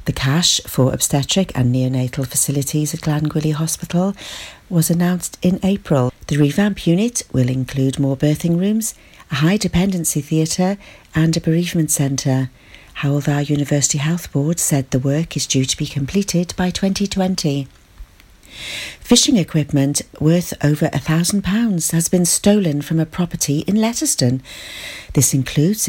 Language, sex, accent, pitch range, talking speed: English, female, British, 140-175 Hz, 140 wpm